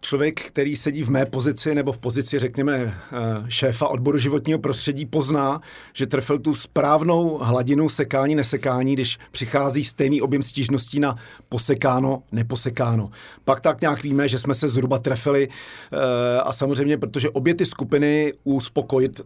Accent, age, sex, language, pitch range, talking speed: native, 40-59, male, Czech, 125-145 Hz, 145 wpm